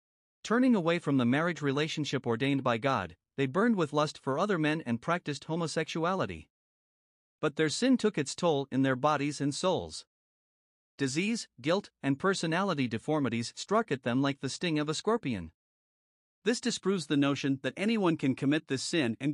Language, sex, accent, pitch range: English, male, American, 135-170 Hz